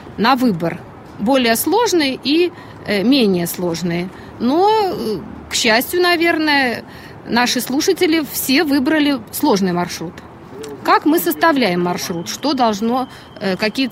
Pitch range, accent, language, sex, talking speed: 210-290 Hz, native, Russian, female, 110 wpm